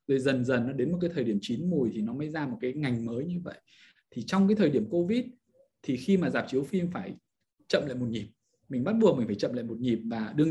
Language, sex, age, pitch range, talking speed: Vietnamese, male, 20-39, 130-190 Hz, 280 wpm